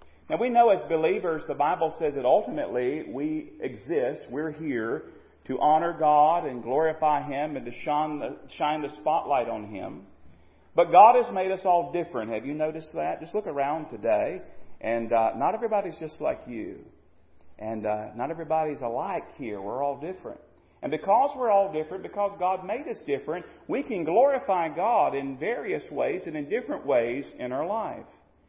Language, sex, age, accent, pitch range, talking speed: English, male, 40-59, American, 125-175 Hz, 175 wpm